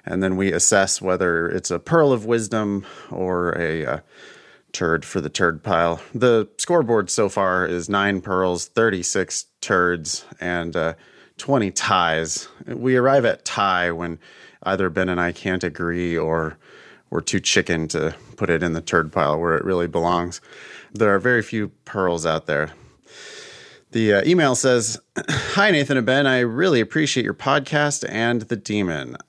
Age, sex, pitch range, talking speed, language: 30-49, male, 90-135 Hz, 160 wpm, English